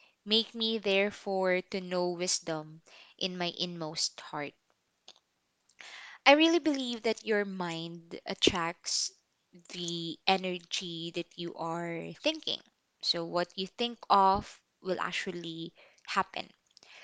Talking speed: 110 wpm